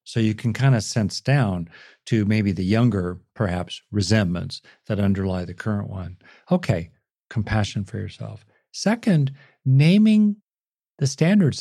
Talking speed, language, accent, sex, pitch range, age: 135 wpm, English, American, male, 105-130 Hz, 50-69